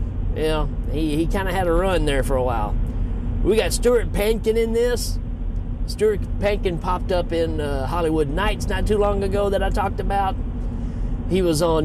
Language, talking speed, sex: English, 185 wpm, male